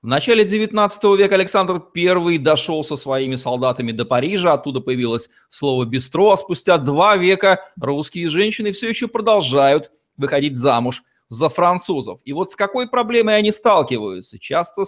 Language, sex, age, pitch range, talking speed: Russian, male, 30-49, 140-195 Hz, 150 wpm